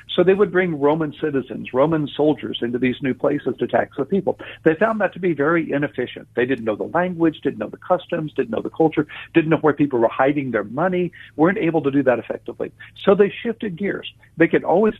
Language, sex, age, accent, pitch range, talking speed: English, male, 60-79, American, 135-180 Hz, 230 wpm